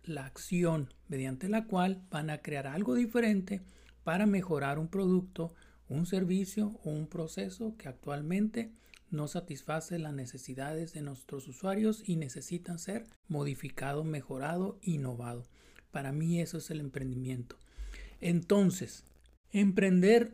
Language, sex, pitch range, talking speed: Spanish, male, 145-195 Hz, 125 wpm